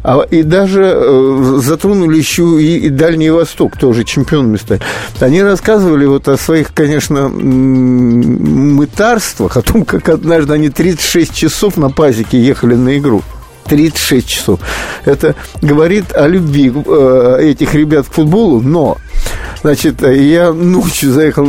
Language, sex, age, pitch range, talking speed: Russian, male, 50-69, 135-185 Hz, 135 wpm